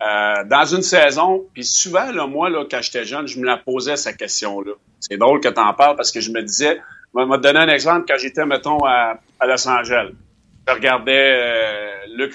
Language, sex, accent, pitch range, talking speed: French, male, Canadian, 115-140 Hz, 225 wpm